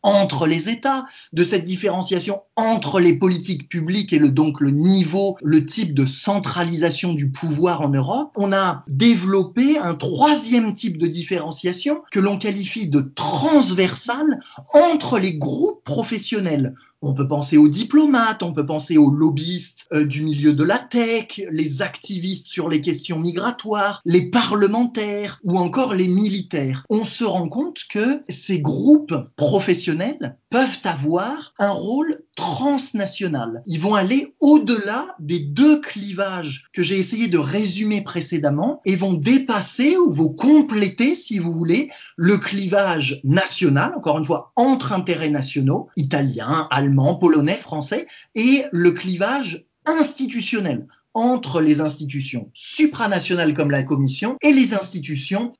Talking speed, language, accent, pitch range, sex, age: 140 wpm, French, French, 155-225 Hz, male, 20-39